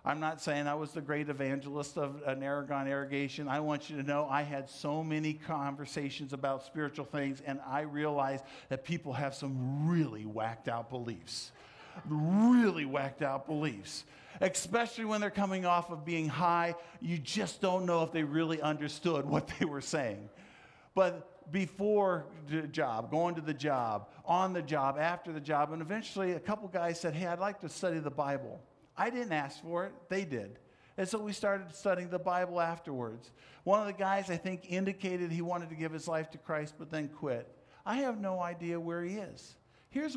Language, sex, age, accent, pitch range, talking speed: English, male, 50-69, American, 140-180 Hz, 190 wpm